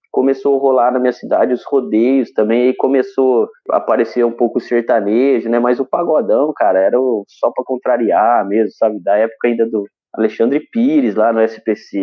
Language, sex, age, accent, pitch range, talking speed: Portuguese, male, 20-39, Brazilian, 110-130 Hz, 190 wpm